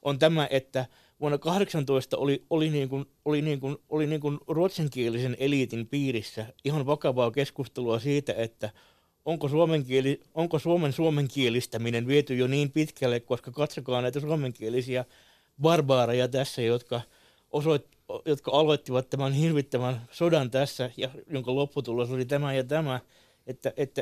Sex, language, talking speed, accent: male, Finnish, 140 wpm, native